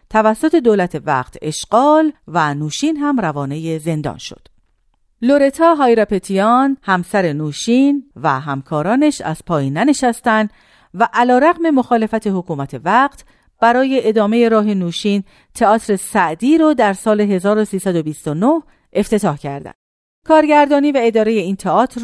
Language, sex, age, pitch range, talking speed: Persian, female, 40-59, 170-255 Hz, 110 wpm